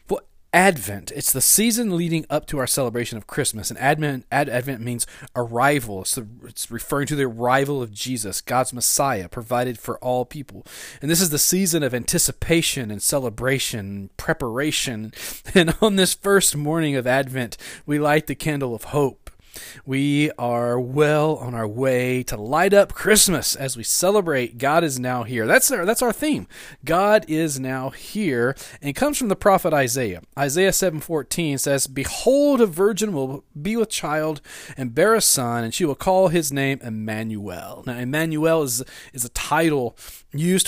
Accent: American